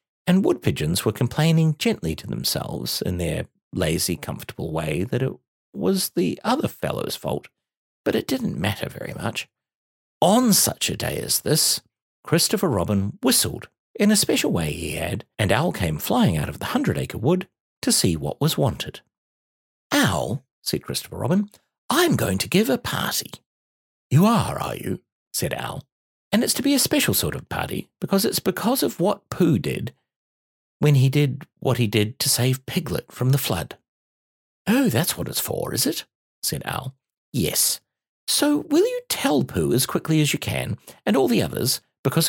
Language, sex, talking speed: English, male, 175 wpm